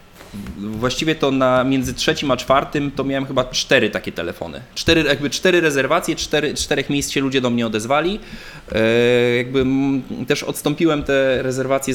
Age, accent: 20-39, native